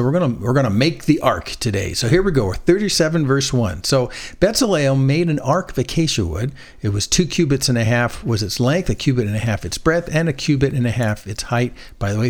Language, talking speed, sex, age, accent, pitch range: English, 265 wpm, male, 50-69, American, 115-165 Hz